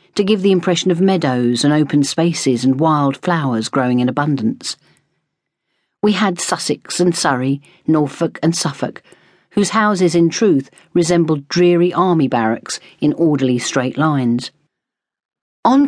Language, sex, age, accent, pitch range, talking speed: English, female, 40-59, British, 130-175 Hz, 135 wpm